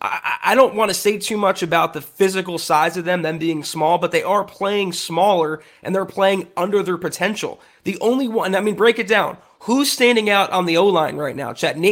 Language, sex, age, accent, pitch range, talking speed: English, male, 30-49, American, 180-225 Hz, 220 wpm